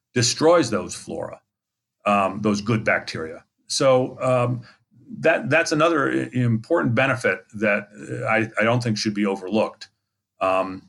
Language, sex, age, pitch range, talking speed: English, male, 50-69, 105-125 Hz, 125 wpm